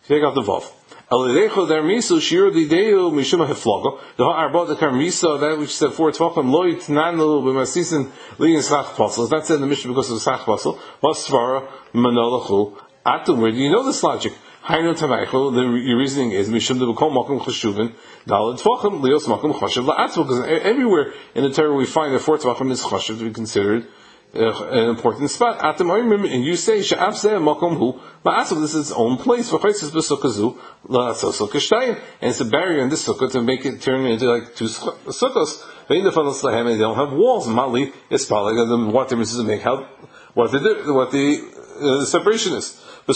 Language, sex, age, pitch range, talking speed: English, male, 30-49, 125-170 Hz, 115 wpm